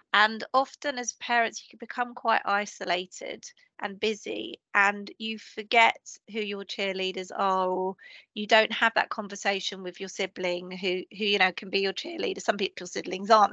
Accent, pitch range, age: British, 200-240 Hz, 30-49